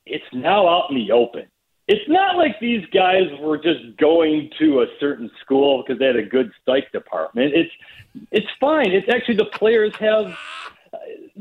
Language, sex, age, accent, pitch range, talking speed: English, male, 40-59, American, 165-250 Hz, 175 wpm